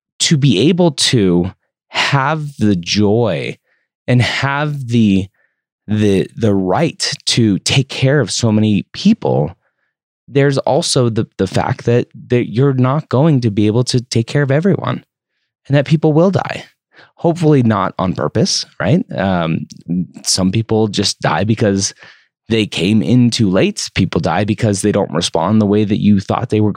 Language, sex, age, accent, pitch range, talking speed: English, male, 20-39, American, 105-150 Hz, 160 wpm